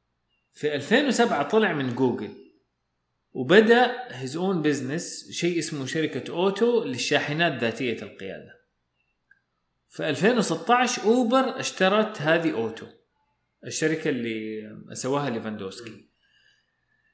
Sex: male